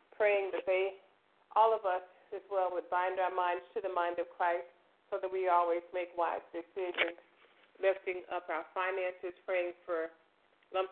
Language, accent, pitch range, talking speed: English, American, 170-185 Hz, 170 wpm